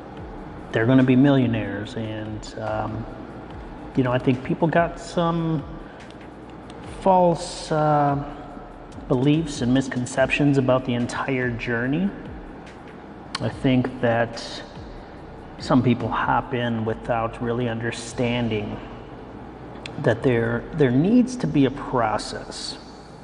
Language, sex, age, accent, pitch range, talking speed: English, male, 30-49, American, 120-145 Hz, 105 wpm